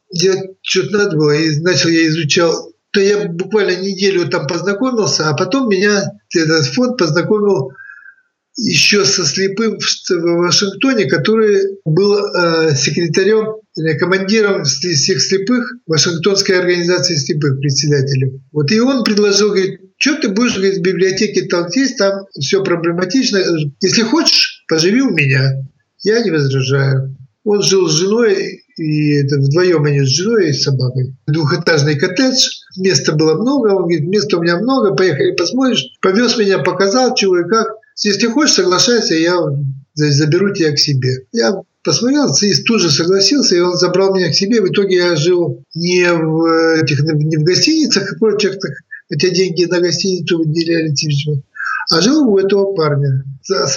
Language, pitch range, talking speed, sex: Russian, 160-205 Hz, 145 wpm, male